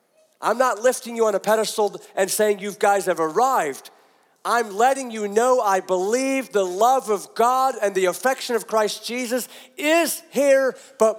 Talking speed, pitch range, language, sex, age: 170 wpm, 180-235 Hz, English, male, 50-69